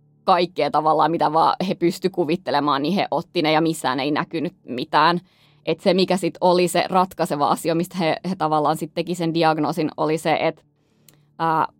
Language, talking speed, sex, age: Finnish, 180 wpm, female, 20-39